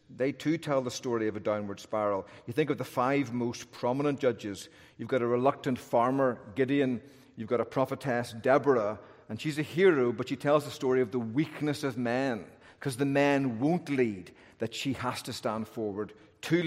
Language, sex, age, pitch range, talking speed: English, male, 40-59, 115-140 Hz, 195 wpm